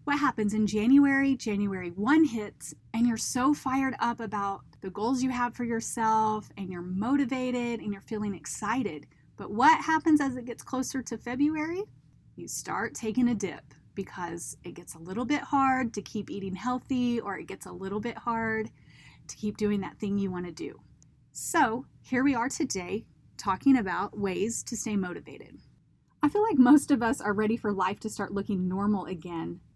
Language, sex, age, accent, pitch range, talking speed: English, female, 30-49, American, 195-255 Hz, 190 wpm